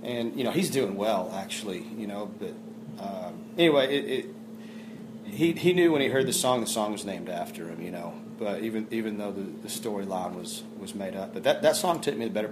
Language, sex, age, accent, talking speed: English, male, 30-49, American, 235 wpm